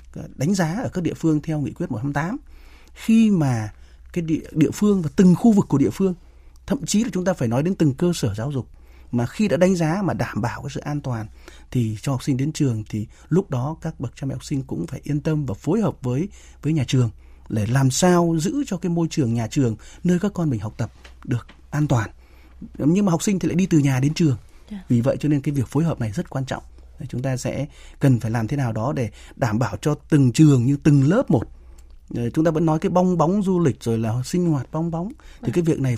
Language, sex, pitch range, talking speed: Vietnamese, male, 120-170 Hz, 255 wpm